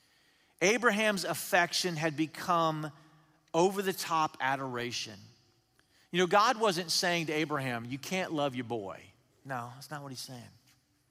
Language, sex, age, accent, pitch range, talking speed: English, male, 40-59, American, 125-180 Hz, 140 wpm